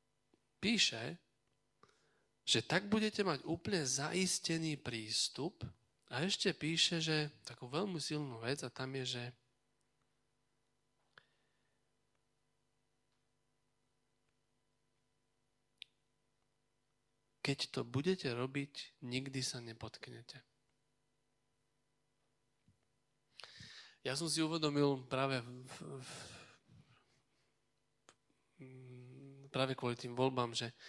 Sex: male